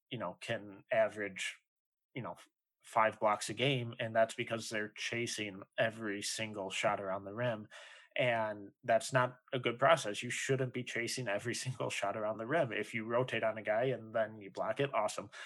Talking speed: 190 wpm